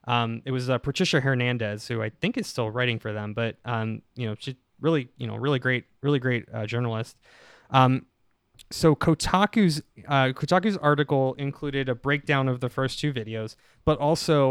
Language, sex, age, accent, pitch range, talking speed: English, male, 20-39, American, 115-140 Hz, 180 wpm